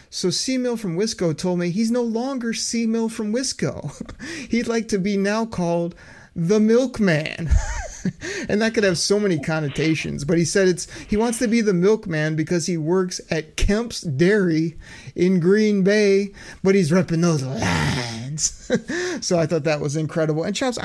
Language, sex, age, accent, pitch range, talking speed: English, male, 30-49, American, 155-220 Hz, 175 wpm